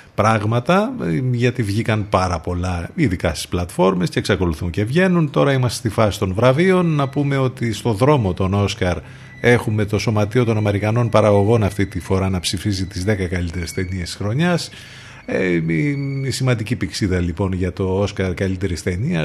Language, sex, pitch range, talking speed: Greek, male, 100-130 Hz, 170 wpm